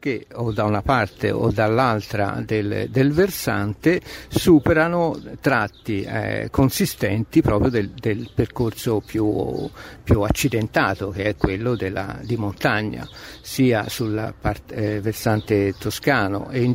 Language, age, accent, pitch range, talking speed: Italian, 60-79, native, 105-130 Hz, 120 wpm